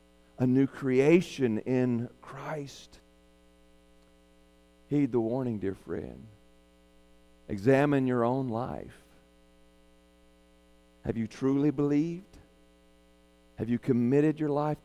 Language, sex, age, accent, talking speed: English, male, 50-69, American, 95 wpm